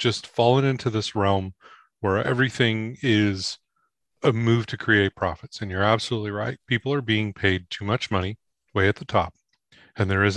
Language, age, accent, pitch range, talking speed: English, 30-49, American, 100-125 Hz, 180 wpm